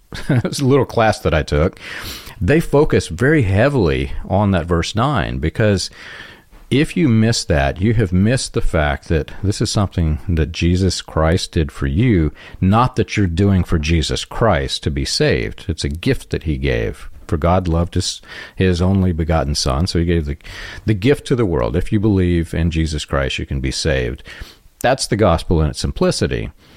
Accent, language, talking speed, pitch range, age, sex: American, English, 190 wpm, 80-110 Hz, 50-69, male